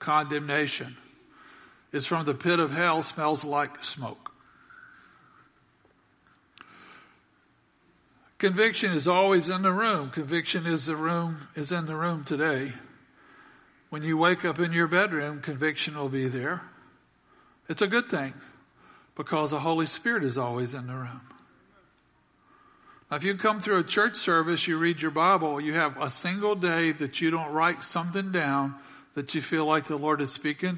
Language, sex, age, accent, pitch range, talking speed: English, male, 60-79, American, 145-175 Hz, 155 wpm